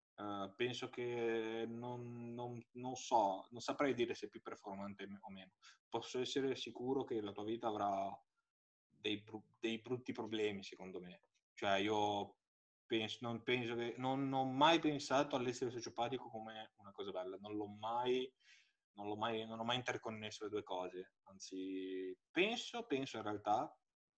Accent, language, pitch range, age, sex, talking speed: native, Italian, 105-130 Hz, 20-39, male, 135 wpm